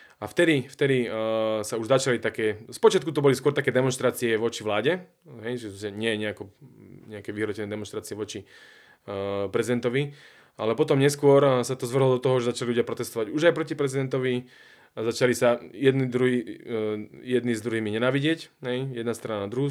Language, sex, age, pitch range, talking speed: Slovak, male, 20-39, 115-135 Hz, 170 wpm